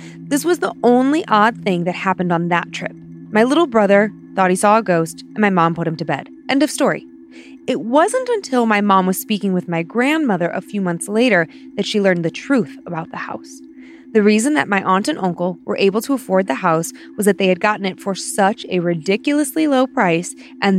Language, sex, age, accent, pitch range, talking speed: English, female, 20-39, American, 175-255 Hz, 220 wpm